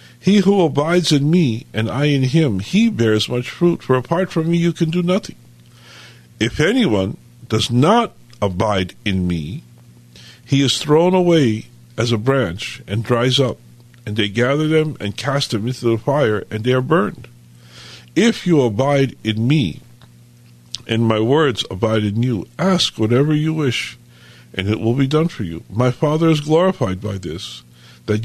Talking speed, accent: 170 wpm, American